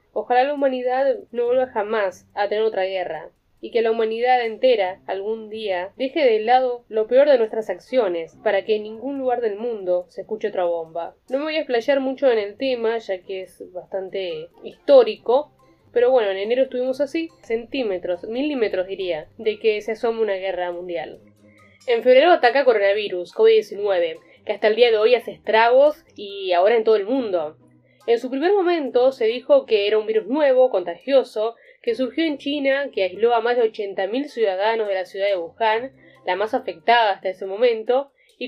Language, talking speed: Spanish, 185 wpm